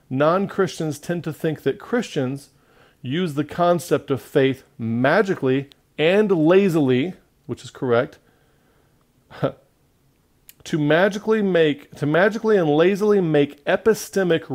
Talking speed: 105 wpm